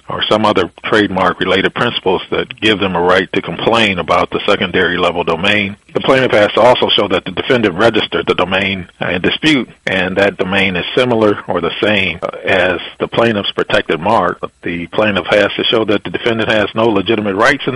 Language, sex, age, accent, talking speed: English, male, 40-59, American, 190 wpm